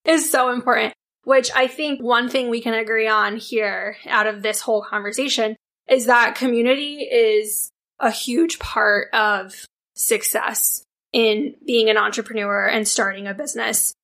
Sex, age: female, 10-29